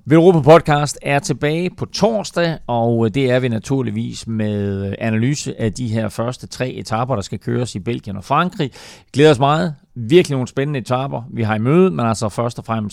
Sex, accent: male, native